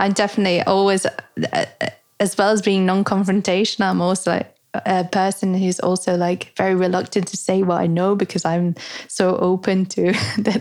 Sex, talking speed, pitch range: female, 165 wpm, 170-195 Hz